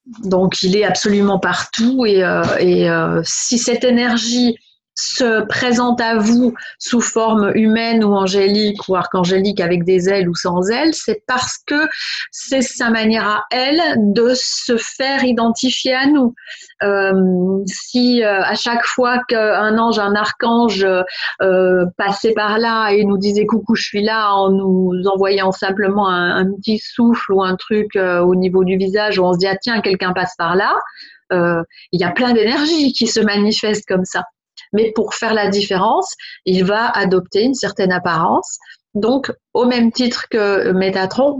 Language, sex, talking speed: French, female, 170 wpm